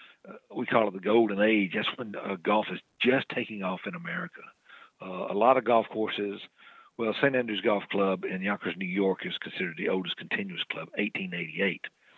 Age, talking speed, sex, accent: 50-69, 190 wpm, male, American